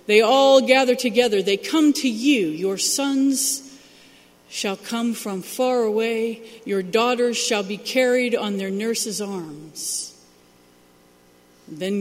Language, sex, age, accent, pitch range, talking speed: English, female, 50-69, American, 155-235 Hz, 125 wpm